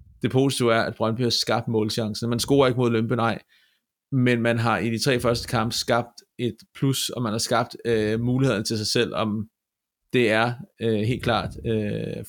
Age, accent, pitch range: 30-49, native, 110-125 Hz